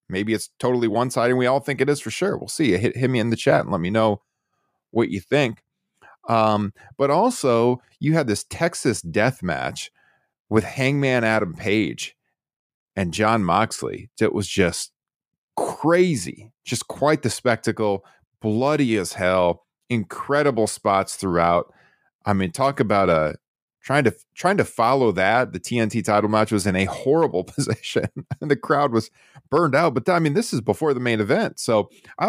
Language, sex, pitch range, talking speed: English, male, 95-130 Hz, 180 wpm